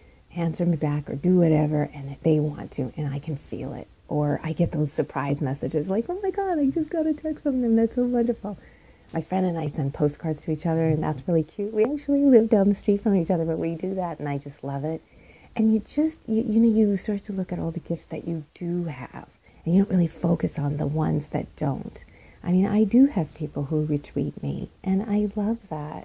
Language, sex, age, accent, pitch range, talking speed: English, female, 40-59, American, 150-205 Hz, 250 wpm